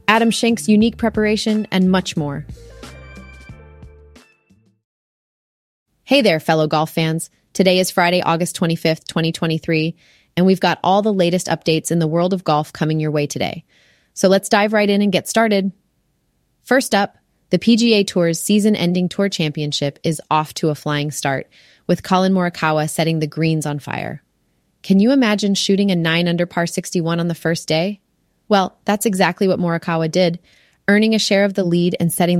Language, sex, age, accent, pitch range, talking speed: English, female, 20-39, American, 155-190 Hz, 170 wpm